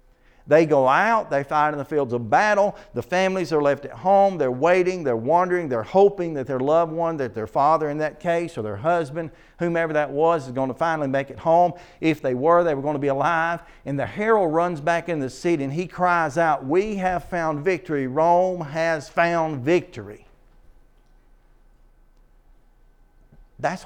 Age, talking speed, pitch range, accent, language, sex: 50-69, 190 wpm, 125-170 Hz, American, English, male